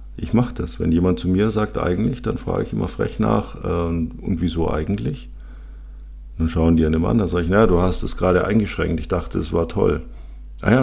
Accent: German